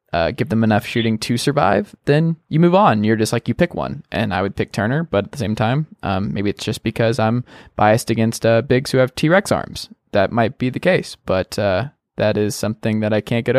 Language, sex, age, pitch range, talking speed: English, male, 20-39, 105-140 Hz, 245 wpm